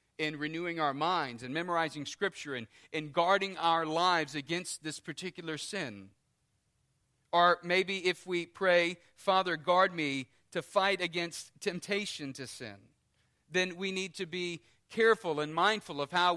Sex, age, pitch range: male, 40-59, 130-180 Hz